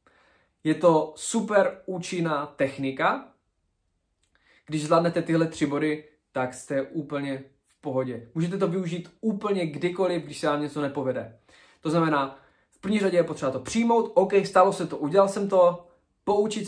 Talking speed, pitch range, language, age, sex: 150 wpm, 135-170 Hz, Czech, 20-39, male